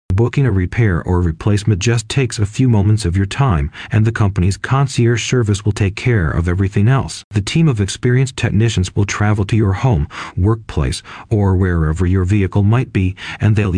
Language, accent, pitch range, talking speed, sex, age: English, American, 95-115 Hz, 185 wpm, male, 40-59